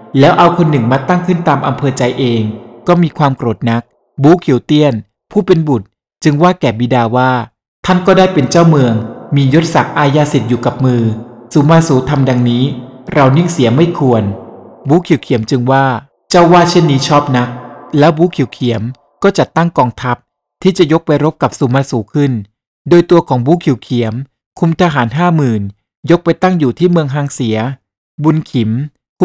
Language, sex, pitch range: Thai, male, 125-160 Hz